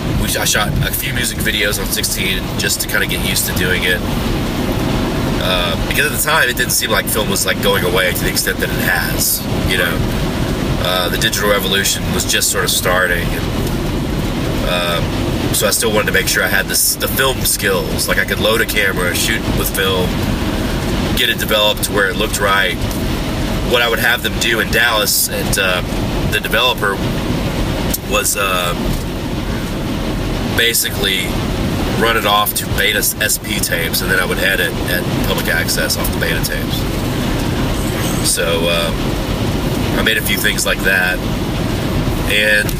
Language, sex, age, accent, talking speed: English, male, 30-49, American, 175 wpm